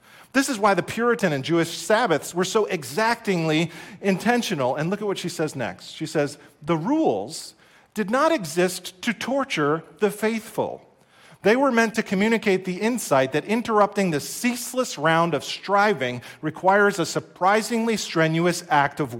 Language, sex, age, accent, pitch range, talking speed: English, male, 40-59, American, 155-215 Hz, 155 wpm